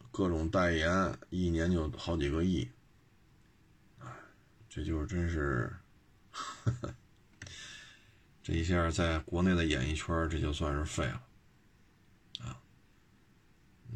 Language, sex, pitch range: Chinese, male, 80-100 Hz